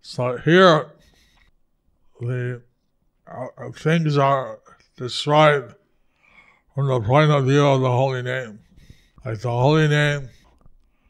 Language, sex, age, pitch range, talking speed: English, male, 60-79, 120-145 Hz, 115 wpm